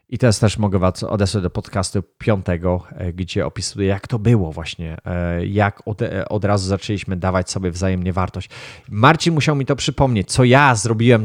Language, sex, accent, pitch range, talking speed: Polish, male, native, 105-135 Hz, 170 wpm